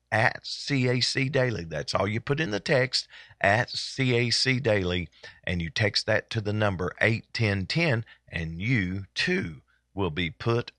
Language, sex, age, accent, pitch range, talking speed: English, male, 40-59, American, 95-120 Hz, 160 wpm